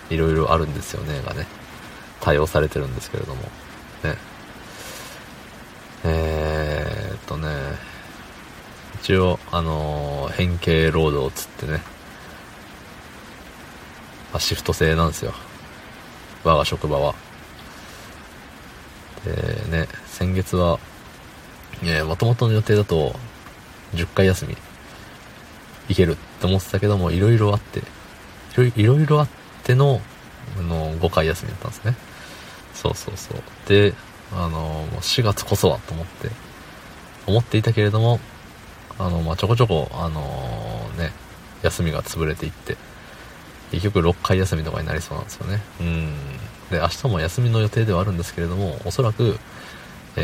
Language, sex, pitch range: Japanese, male, 80-105 Hz